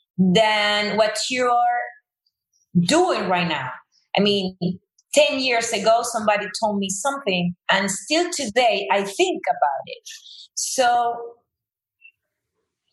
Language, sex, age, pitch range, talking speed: English, female, 30-49, 180-235 Hz, 105 wpm